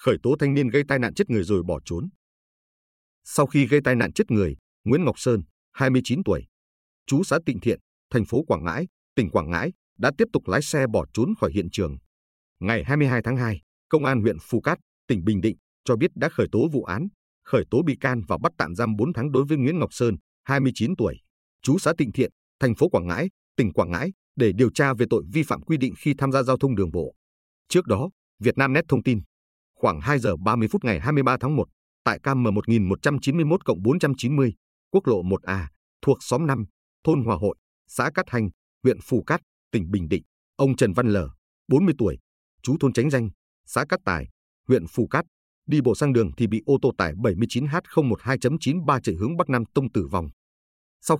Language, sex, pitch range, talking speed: Vietnamese, male, 95-140 Hz, 205 wpm